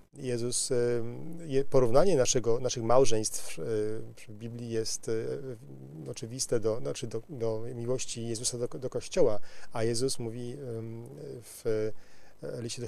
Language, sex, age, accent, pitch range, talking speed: Polish, male, 40-59, native, 110-125 Hz, 110 wpm